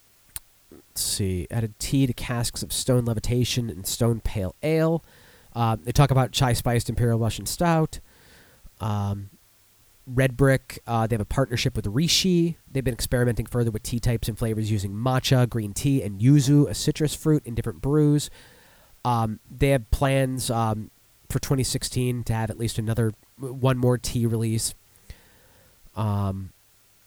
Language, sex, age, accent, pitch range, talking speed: English, male, 30-49, American, 105-130 Hz, 155 wpm